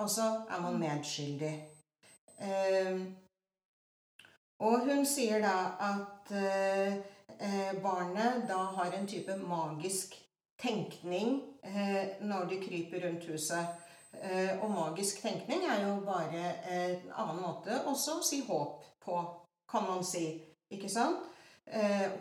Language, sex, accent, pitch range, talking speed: Danish, female, Swedish, 170-225 Hz, 120 wpm